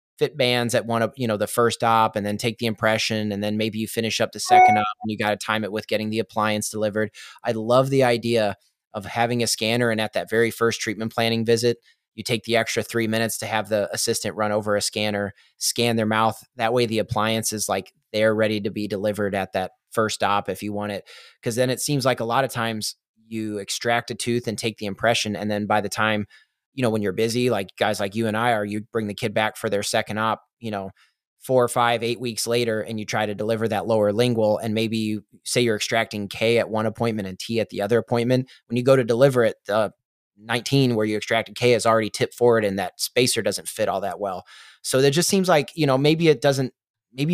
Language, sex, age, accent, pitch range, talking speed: English, male, 30-49, American, 105-120 Hz, 250 wpm